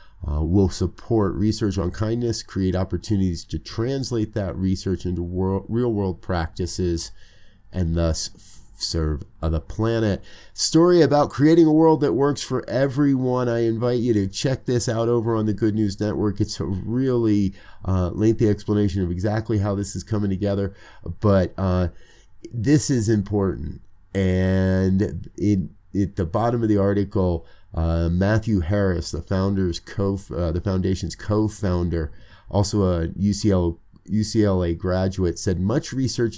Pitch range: 90-110 Hz